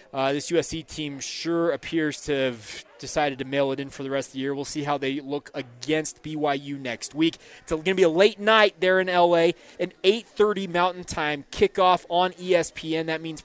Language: English